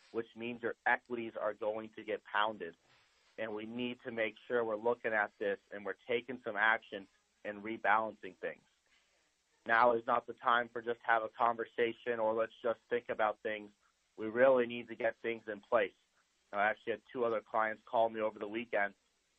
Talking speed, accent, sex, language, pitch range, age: 190 wpm, American, male, English, 110-120 Hz, 30-49